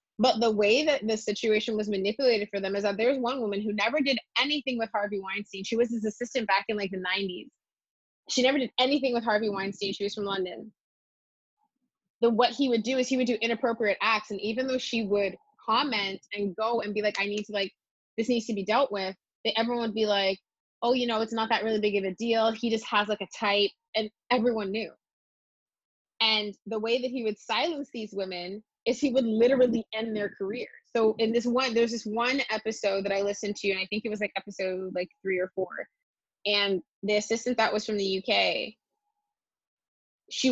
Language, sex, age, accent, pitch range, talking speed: English, female, 20-39, American, 200-240 Hz, 215 wpm